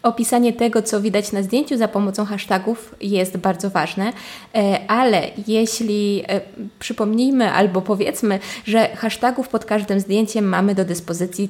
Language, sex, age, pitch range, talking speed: Polish, female, 20-39, 195-235 Hz, 130 wpm